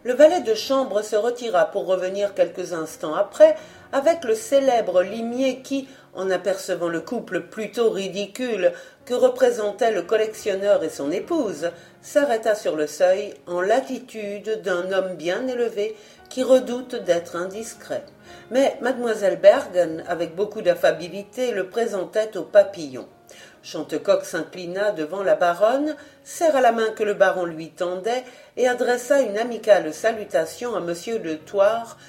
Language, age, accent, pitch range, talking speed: French, 50-69, French, 185-255 Hz, 140 wpm